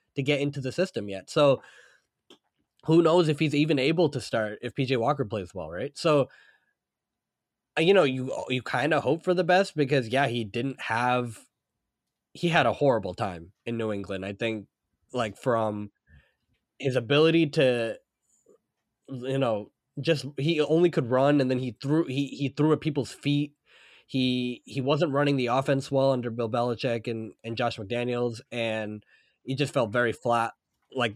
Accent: American